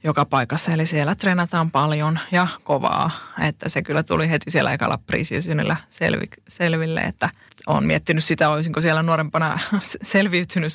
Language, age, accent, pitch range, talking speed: Finnish, 20-39, native, 150-175 Hz, 145 wpm